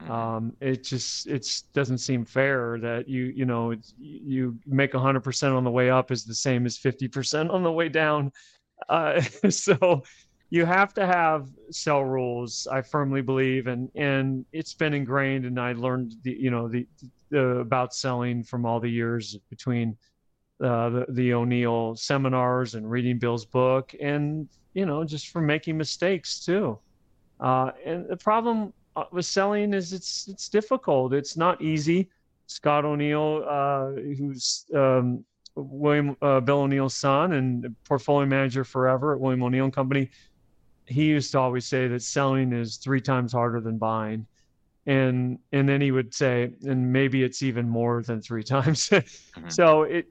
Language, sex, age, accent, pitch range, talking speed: English, male, 30-49, American, 125-150 Hz, 165 wpm